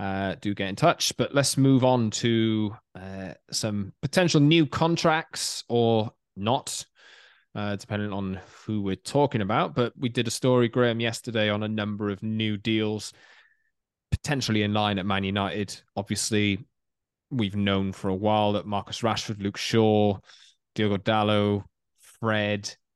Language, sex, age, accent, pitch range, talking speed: English, male, 20-39, British, 100-115 Hz, 150 wpm